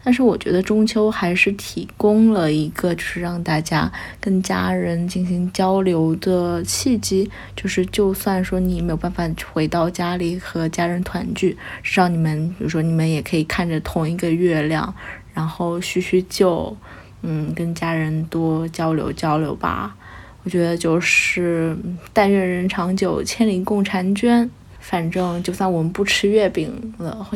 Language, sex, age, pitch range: Chinese, female, 20-39, 165-195 Hz